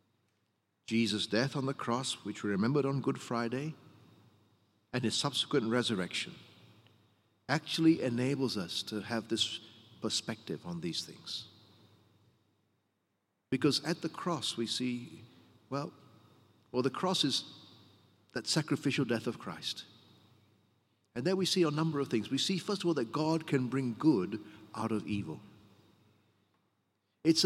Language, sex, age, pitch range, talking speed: English, male, 50-69, 110-145 Hz, 140 wpm